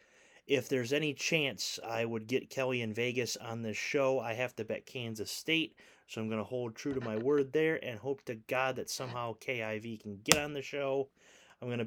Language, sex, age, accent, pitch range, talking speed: English, male, 30-49, American, 115-155 Hz, 220 wpm